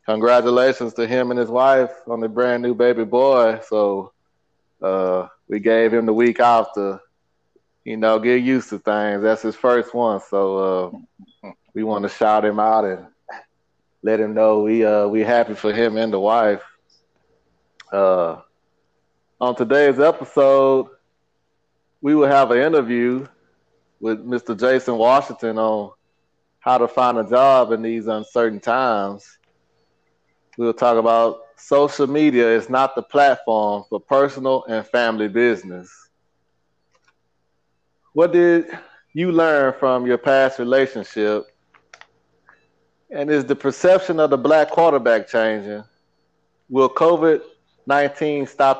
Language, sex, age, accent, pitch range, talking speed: English, male, 20-39, American, 110-135 Hz, 135 wpm